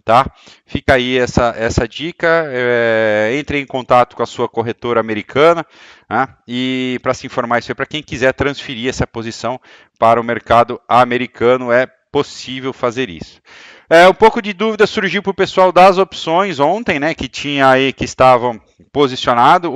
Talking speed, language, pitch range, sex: 170 wpm, Portuguese, 130-160 Hz, male